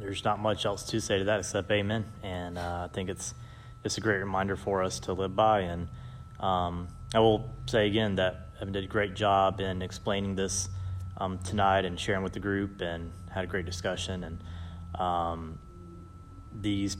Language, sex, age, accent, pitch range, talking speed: English, male, 20-39, American, 90-105 Hz, 190 wpm